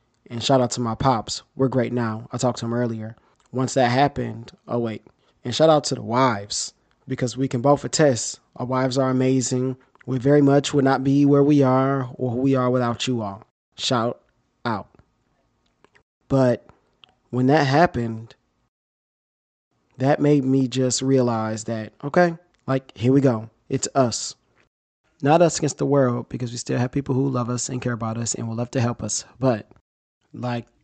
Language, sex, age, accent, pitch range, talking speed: English, male, 20-39, American, 115-135 Hz, 185 wpm